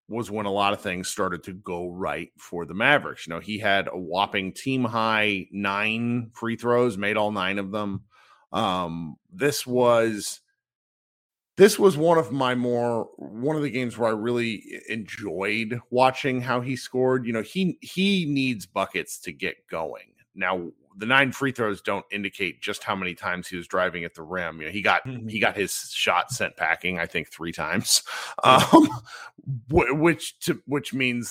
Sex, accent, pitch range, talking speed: male, American, 90-130 Hz, 180 wpm